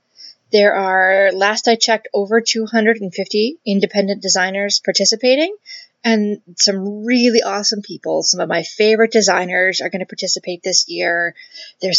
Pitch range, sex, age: 175-215 Hz, female, 20-39